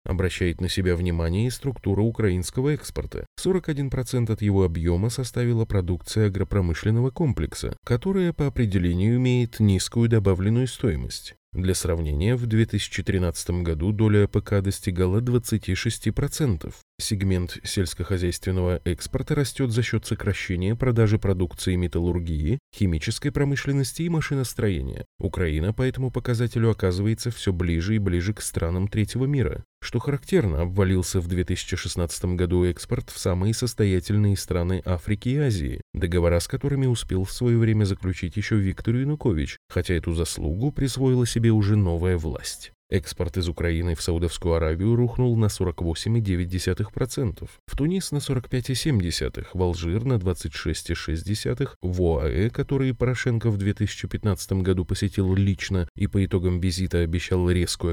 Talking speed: 130 wpm